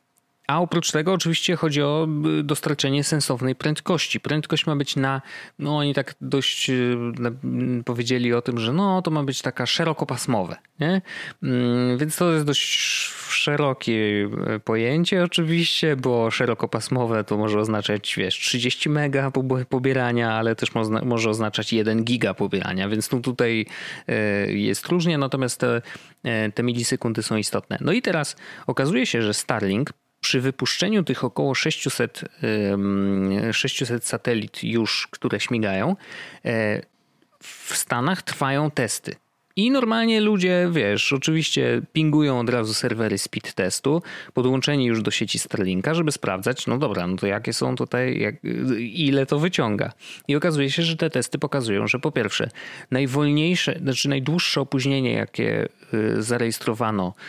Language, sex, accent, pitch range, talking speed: Polish, male, native, 115-150 Hz, 130 wpm